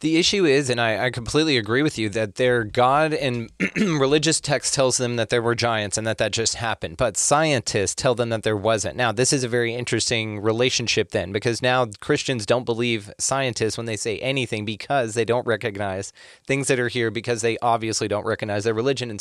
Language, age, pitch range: English, 30-49, 110-130 Hz